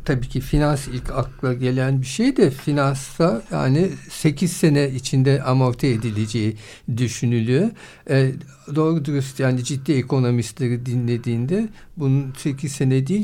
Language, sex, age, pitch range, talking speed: Turkish, male, 60-79, 120-150 Hz, 125 wpm